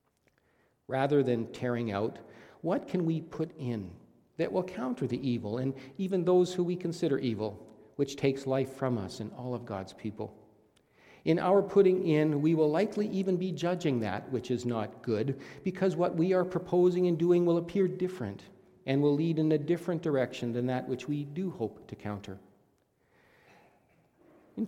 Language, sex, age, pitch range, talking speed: English, male, 50-69, 115-150 Hz, 175 wpm